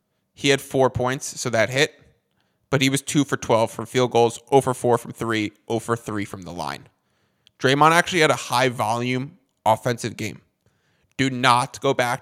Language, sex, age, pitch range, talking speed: English, male, 20-39, 110-130 Hz, 185 wpm